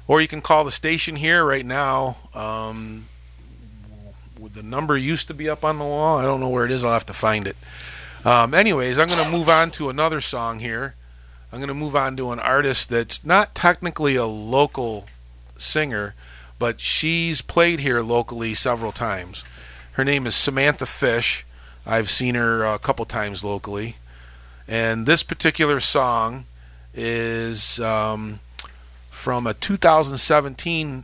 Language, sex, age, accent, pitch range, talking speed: English, male, 40-59, American, 105-150 Hz, 160 wpm